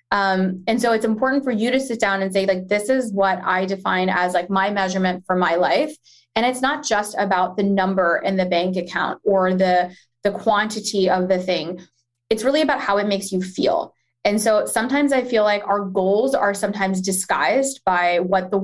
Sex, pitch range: female, 185-215 Hz